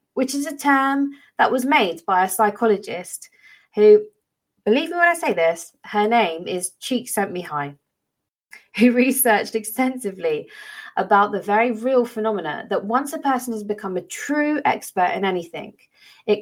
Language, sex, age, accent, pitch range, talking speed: English, female, 20-39, British, 190-280 Hz, 160 wpm